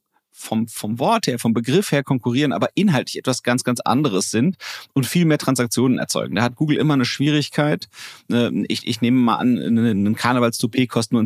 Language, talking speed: German, 185 wpm